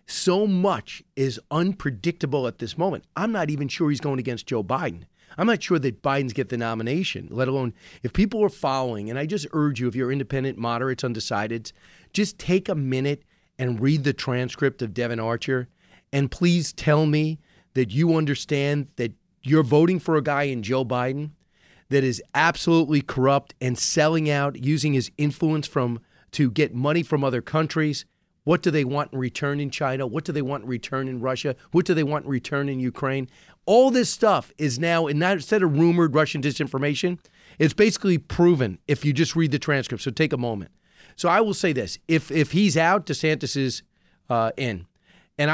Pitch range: 125-160 Hz